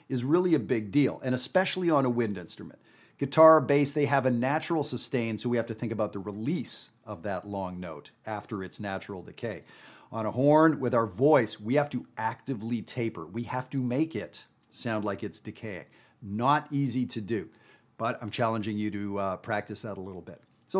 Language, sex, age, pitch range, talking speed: English, male, 40-59, 115-170 Hz, 200 wpm